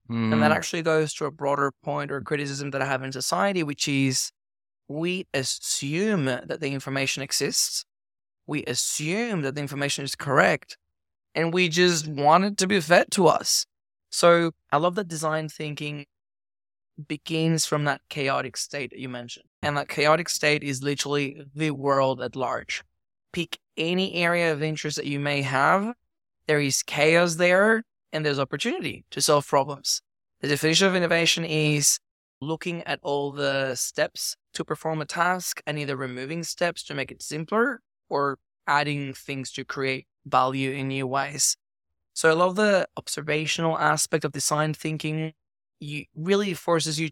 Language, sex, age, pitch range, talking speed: English, male, 20-39, 140-165 Hz, 160 wpm